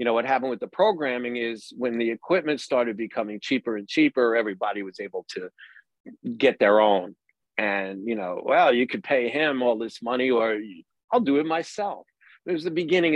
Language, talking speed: English, 190 wpm